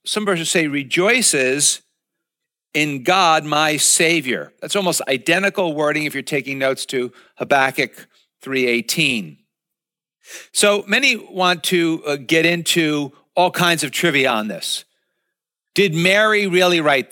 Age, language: 50-69, English